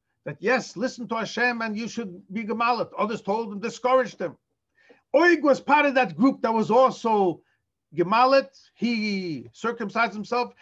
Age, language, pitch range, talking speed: 50-69, English, 210-275 Hz, 160 wpm